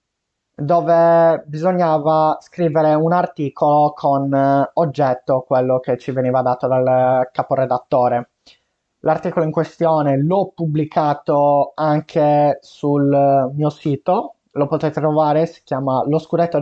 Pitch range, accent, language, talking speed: 135-170 Hz, native, Italian, 110 wpm